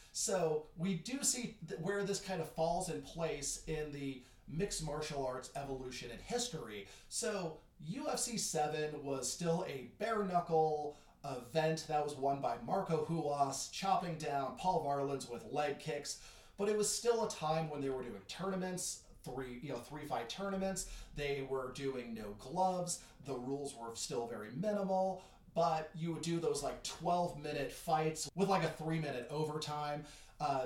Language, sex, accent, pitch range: English, male, American, 135-175 Hz